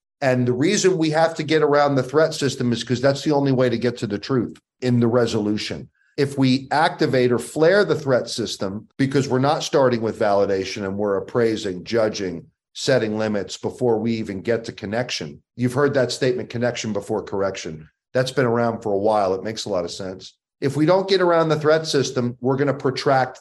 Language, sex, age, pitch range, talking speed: English, male, 40-59, 110-135 Hz, 210 wpm